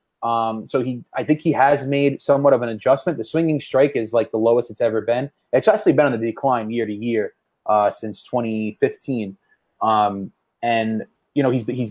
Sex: male